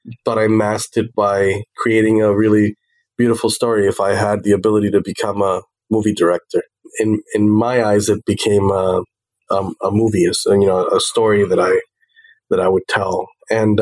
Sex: male